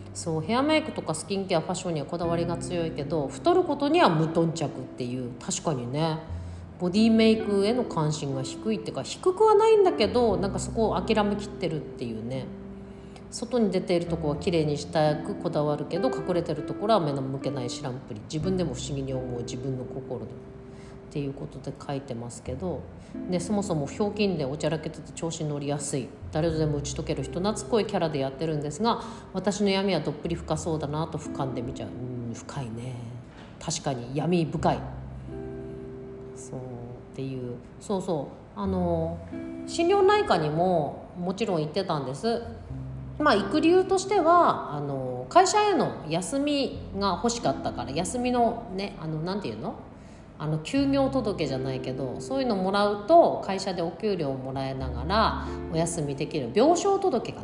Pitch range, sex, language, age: 135-215 Hz, female, Japanese, 40-59